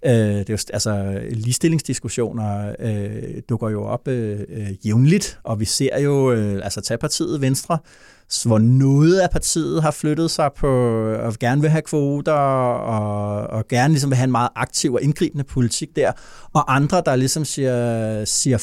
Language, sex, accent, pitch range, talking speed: Danish, male, native, 110-140 Hz, 175 wpm